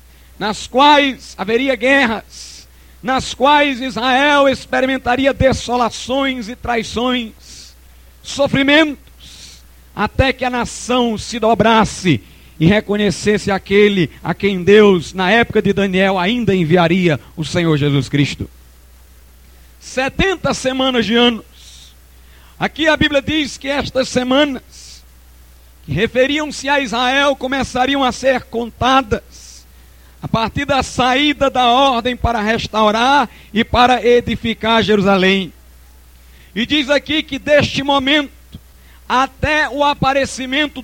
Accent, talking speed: Brazilian, 110 wpm